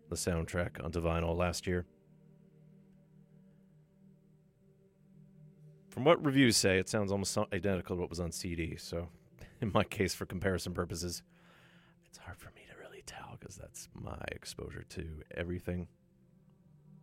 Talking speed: 135 wpm